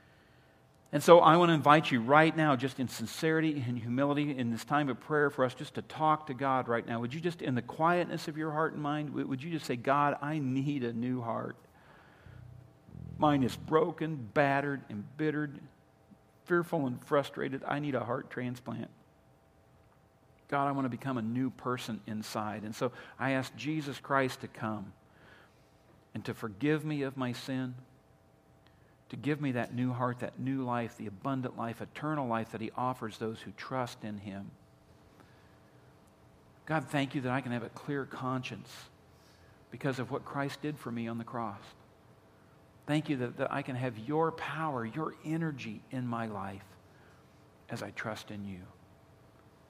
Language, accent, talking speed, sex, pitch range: English, American, 175 wpm, male, 110-140 Hz